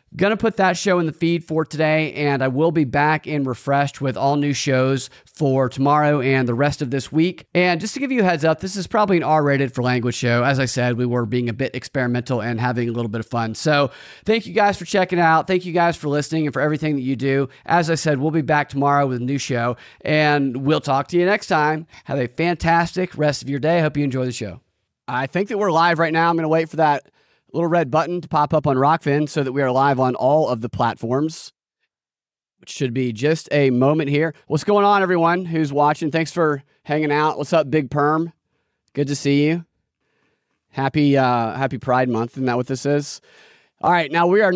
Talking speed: 240 wpm